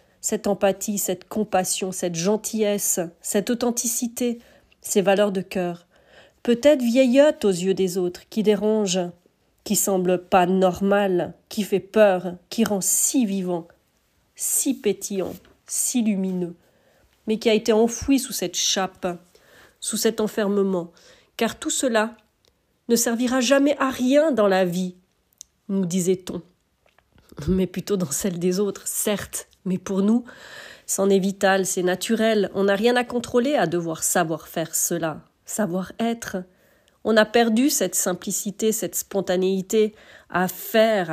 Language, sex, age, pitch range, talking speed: French, female, 40-59, 185-230 Hz, 140 wpm